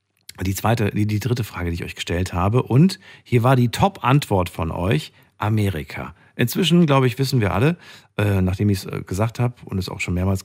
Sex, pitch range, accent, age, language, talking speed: male, 95-130 Hz, German, 50-69, German, 205 wpm